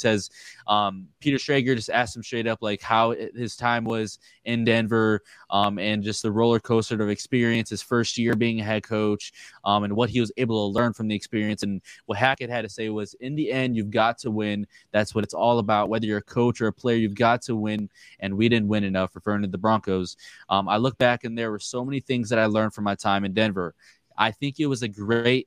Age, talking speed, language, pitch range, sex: 20-39, 245 wpm, English, 105-115 Hz, male